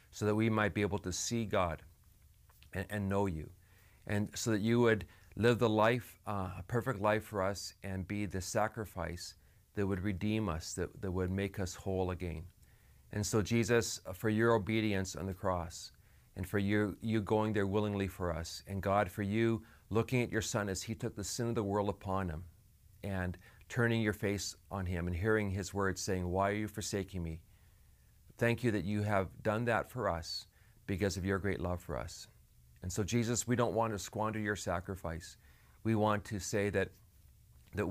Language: English